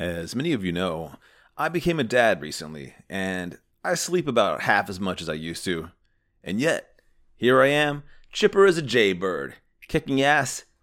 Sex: male